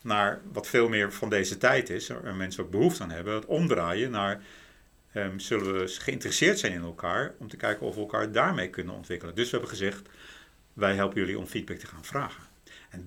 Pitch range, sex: 95-110 Hz, male